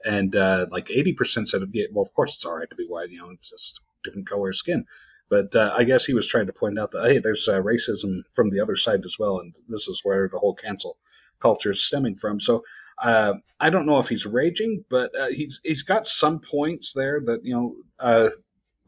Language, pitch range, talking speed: English, 105-140 Hz, 240 wpm